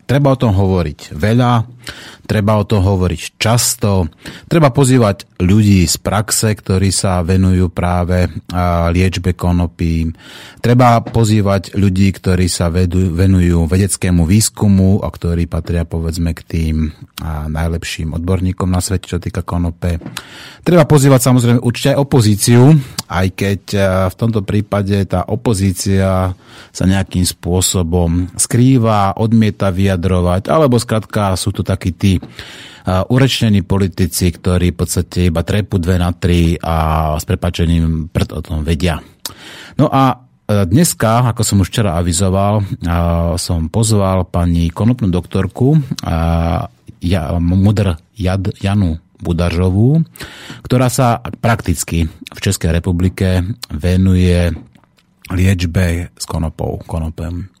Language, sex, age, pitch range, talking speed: Slovak, male, 30-49, 85-110 Hz, 120 wpm